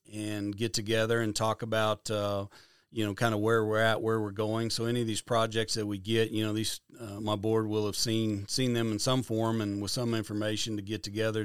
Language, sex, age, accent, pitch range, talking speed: English, male, 40-59, American, 105-115 Hz, 240 wpm